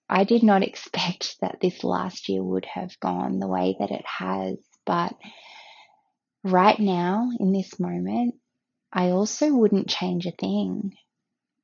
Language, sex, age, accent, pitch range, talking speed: English, female, 20-39, Australian, 175-225 Hz, 145 wpm